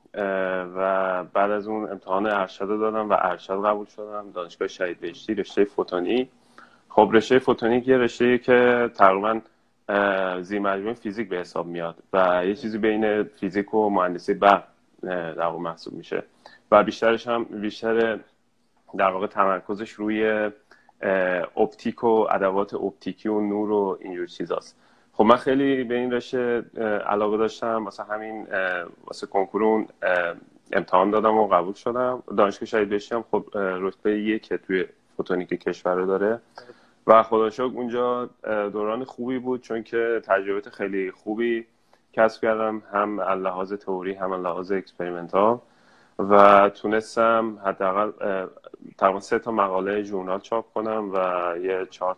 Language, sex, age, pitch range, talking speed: Persian, male, 30-49, 95-115 Hz, 140 wpm